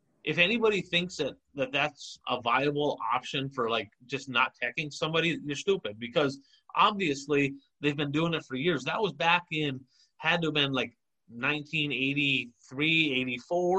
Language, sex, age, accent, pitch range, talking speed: English, male, 30-49, American, 135-180 Hz, 150 wpm